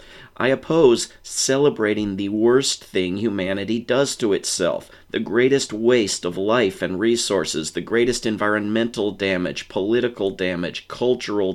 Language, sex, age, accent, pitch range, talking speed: English, male, 40-59, American, 95-120 Hz, 125 wpm